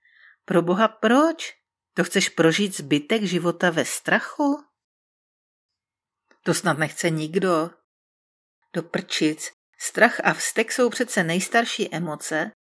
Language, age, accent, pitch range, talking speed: Czech, 40-59, native, 170-240 Hz, 105 wpm